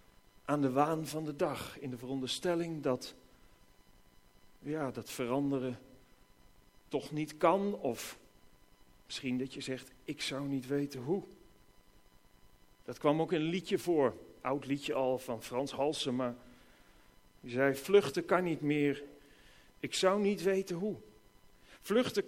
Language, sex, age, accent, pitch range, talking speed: Dutch, male, 40-59, Dutch, 130-180 Hz, 140 wpm